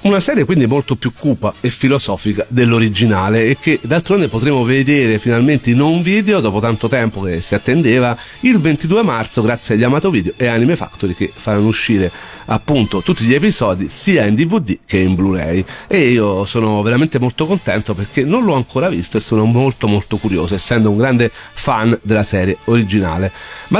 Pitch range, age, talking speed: 110-130 Hz, 40-59, 180 wpm